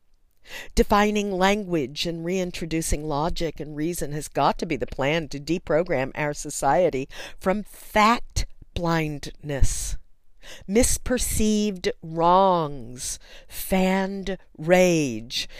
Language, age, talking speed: English, 50-69, 90 wpm